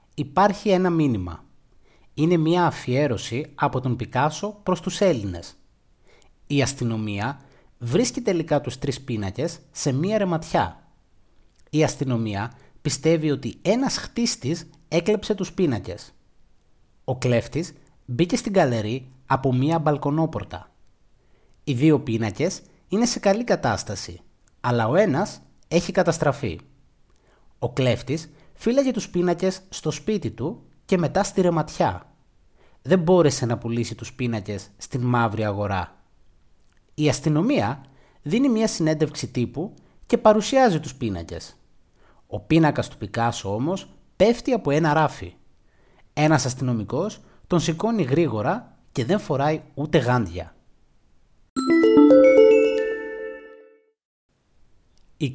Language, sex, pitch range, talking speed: Greek, male, 120-180 Hz, 110 wpm